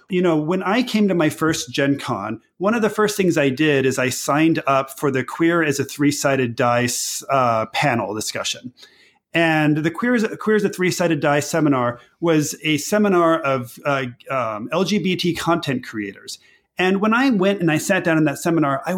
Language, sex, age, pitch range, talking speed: English, male, 30-49, 140-180 Hz, 200 wpm